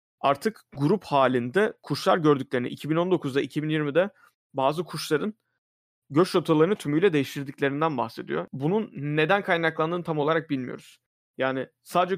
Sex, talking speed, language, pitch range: male, 110 wpm, Turkish, 135-165 Hz